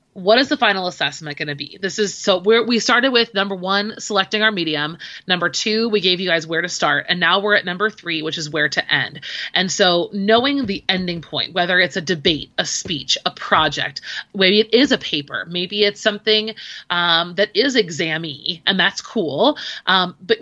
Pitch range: 170-215 Hz